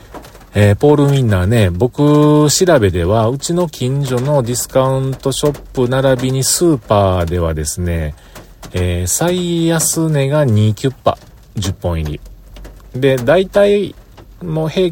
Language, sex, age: Japanese, male, 40-59